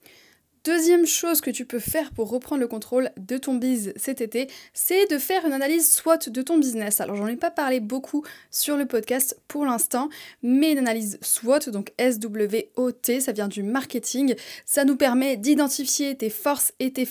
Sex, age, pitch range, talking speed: female, 20-39, 220-275 Hz, 185 wpm